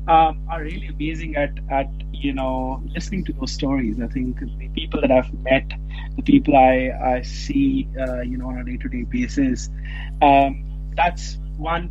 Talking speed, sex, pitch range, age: 170 wpm, male, 135-155 Hz, 30-49